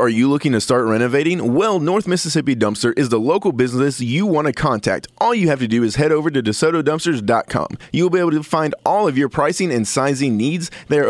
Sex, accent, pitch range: male, American, 135-180 Hz